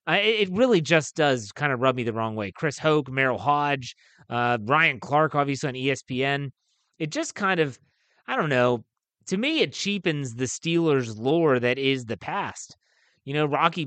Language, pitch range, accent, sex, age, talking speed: English, 135-180 Hz, American, male, 30-49, 180 wpm